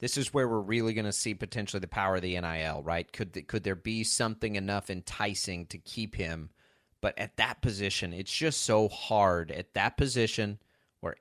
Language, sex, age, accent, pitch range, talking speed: English, male, 30-49, American, 95-120 Hz, 200 wpm